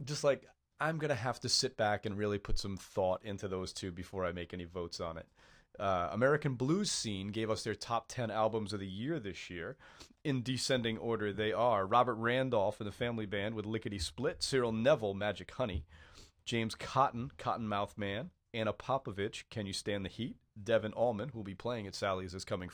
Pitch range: 105-135 Hz